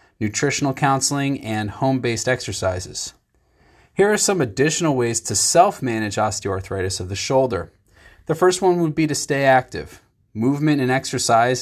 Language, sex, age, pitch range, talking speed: English, male, 30-49, 105-140 Hz, 140 wpm